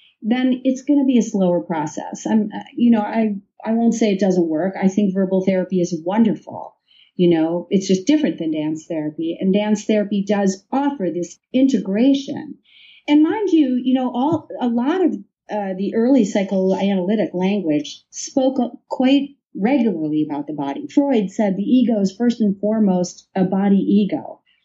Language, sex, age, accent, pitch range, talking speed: English, female, 40-59, American, 175-235 Hz, 170 wpm